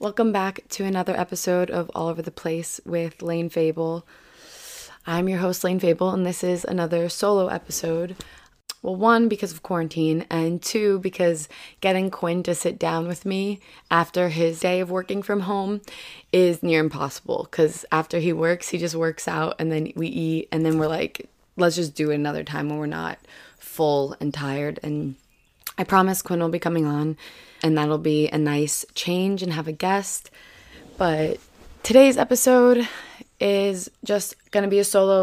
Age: 20-39